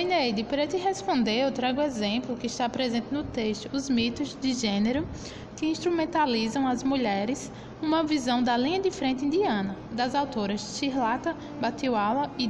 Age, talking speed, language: 10-29, 155 wpm, Portuguese